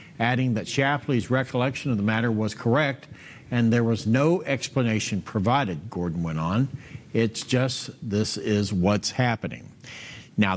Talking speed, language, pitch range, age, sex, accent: 140 wpm, English, 105-135 Hz, 50-69, male, American